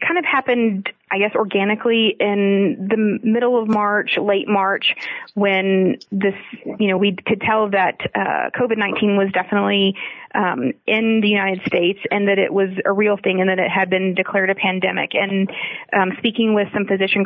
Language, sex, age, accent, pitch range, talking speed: English, female, 30-49, American, 195-210 Hz, 175 wpm